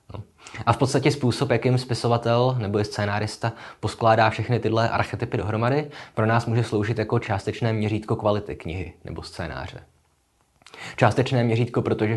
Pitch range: 100-120 Hz